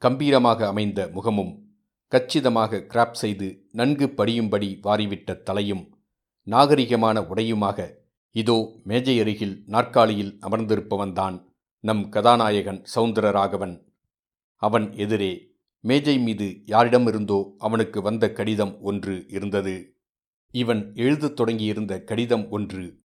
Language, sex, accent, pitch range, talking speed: Tamil, male, native, 100-120 Hz, 90 wpm